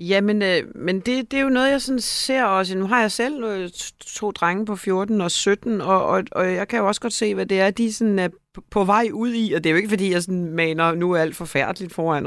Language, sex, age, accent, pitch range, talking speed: Danish, female, 30-49, native, 175-215 Hz, 270 wpm